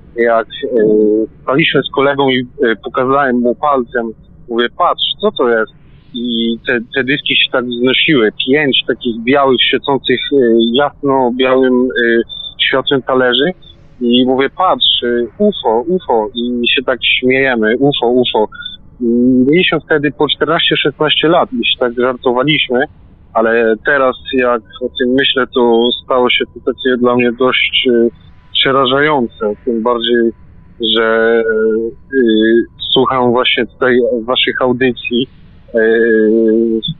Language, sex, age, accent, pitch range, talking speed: Polish, male, 40-59, native, 120-140 Hz, 125 wpm